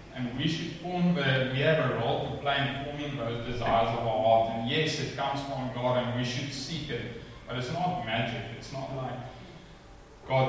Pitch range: 115-140 Hz